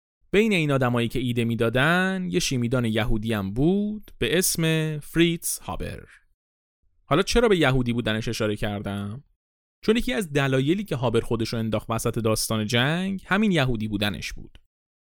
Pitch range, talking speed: 105-155 Hz, 155 wpm